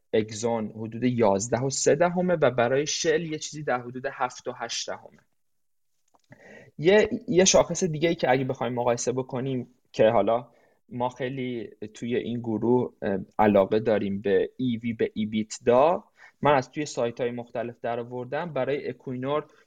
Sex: male